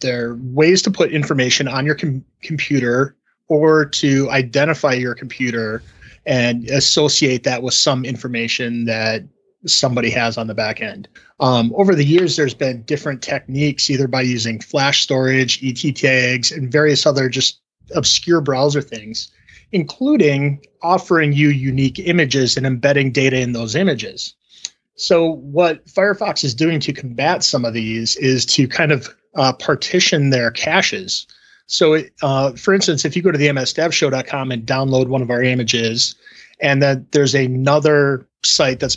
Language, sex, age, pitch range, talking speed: English, male, 30-49, 125-150 Hz, 155 wpm